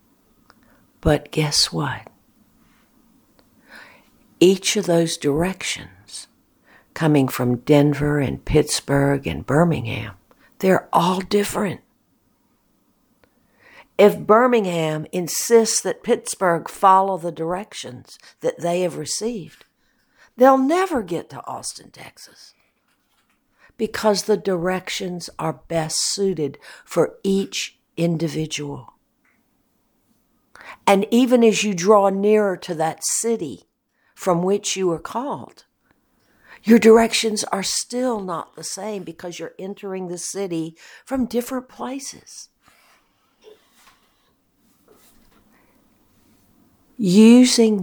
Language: English